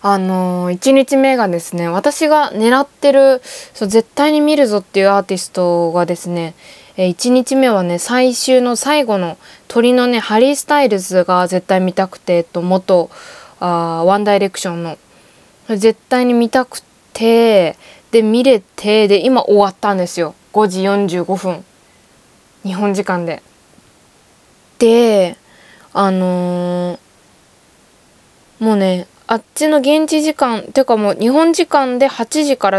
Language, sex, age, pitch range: Japanese, female, 20-39, 185-255 Hz